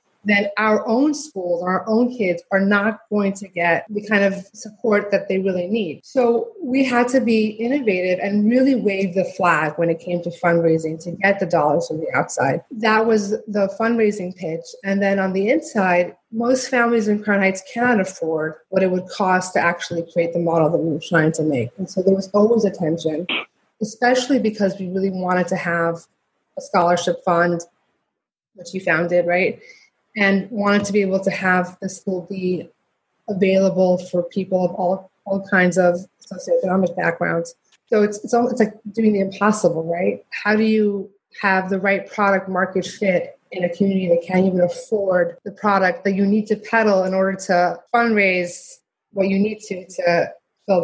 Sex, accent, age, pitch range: female, American, 30-49, 180-215 Hz